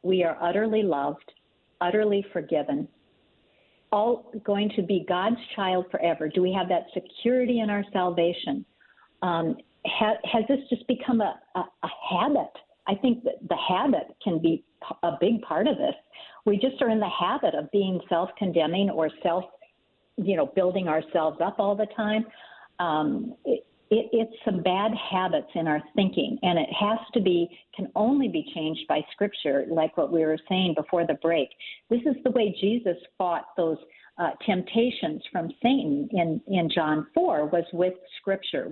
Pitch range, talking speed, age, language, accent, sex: 175-240 Hz, 165 wpm, 50-69, English, American, female